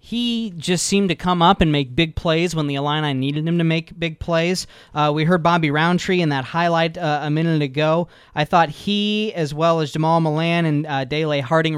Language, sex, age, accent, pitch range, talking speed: English, male, 20-39, American, 140-160 Hz, 220 wpm